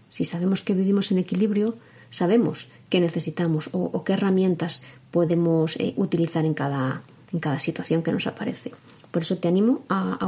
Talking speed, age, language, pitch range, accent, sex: 170 wpm, 30-49, Spanish, 170-225 Hz, Spanish, female